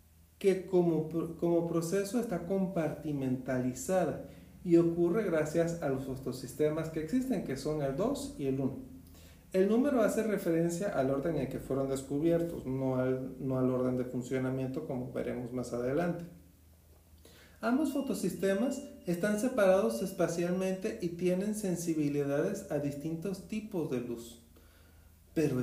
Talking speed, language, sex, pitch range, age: 135 wpm, Spanish, male, 130-195 Hz, 40-59